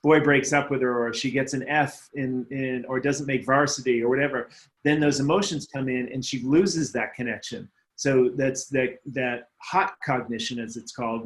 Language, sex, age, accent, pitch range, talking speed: English, male, 30-49, American, 125-150 Hz, 195 wpm